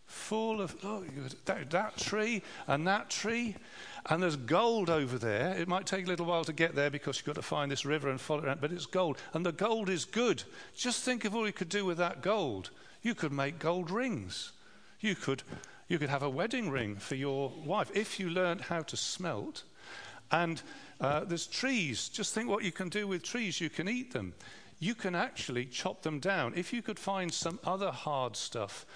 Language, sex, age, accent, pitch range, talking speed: English, male, 50-69, British, 140-190 Hz, 215 wpm